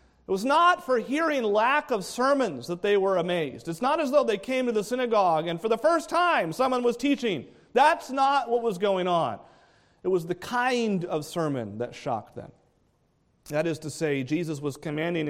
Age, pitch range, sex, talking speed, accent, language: 40-59, 155-225 Hz, male, 200 wpm, American, English